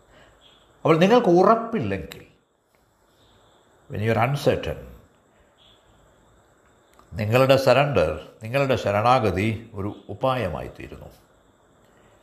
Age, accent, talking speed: 60-79, native, 65 wpm